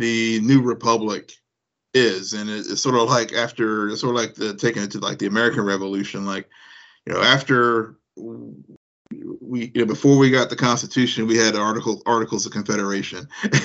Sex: male